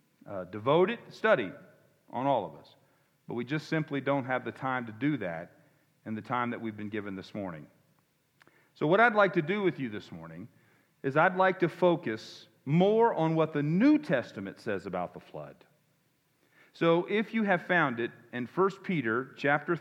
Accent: American